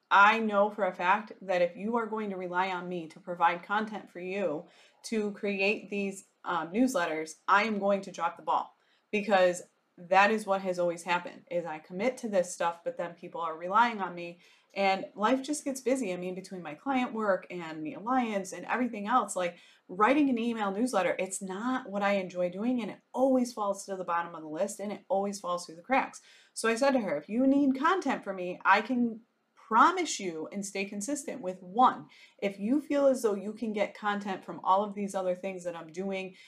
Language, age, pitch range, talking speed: English, 30-49, 185-255 Hz, 220 wpm